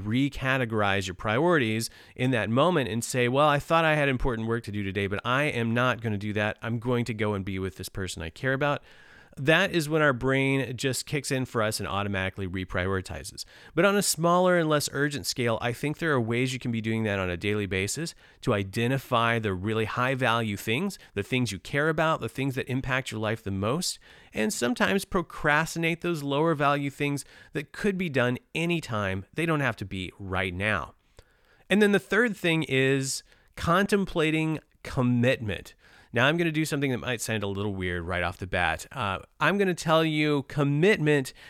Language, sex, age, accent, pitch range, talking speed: English, male, 30-49, American, 110-145 Hz, 200 wpm